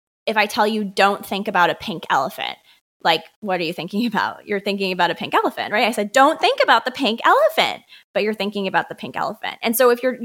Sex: female